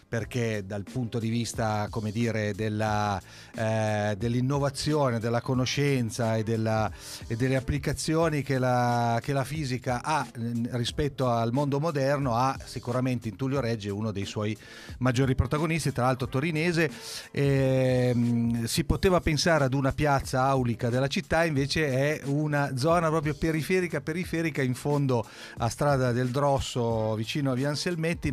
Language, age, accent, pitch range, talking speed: Italian, 40-59, native, 115-140 Hz, 140 wpm